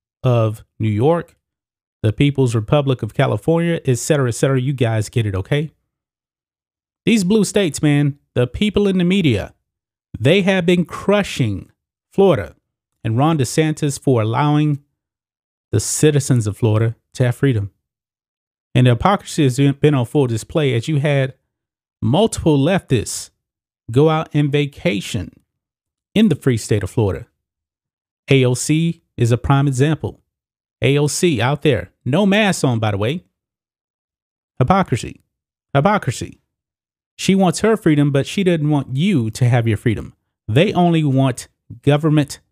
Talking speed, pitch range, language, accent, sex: 135 wpm, 115-165 Hz, English, American, male